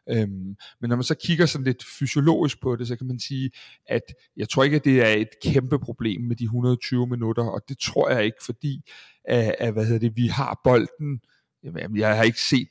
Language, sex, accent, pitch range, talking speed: Danish, male, native, 105-125 Hz, 215 wpm